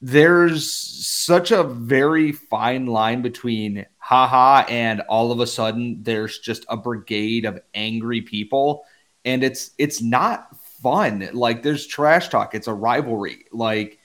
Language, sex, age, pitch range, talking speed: English, male, 30-49, 110-135 Hz, 140 wpm